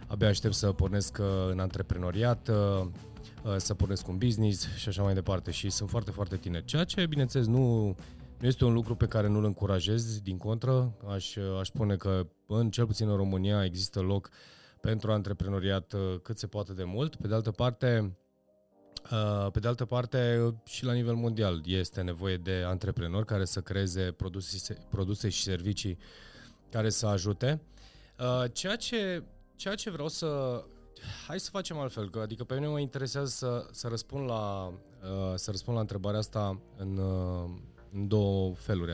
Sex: male